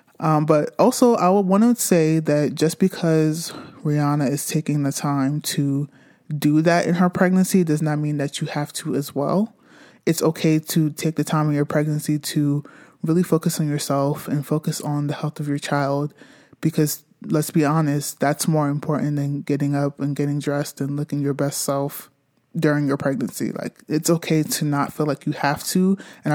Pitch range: 145-160 Hz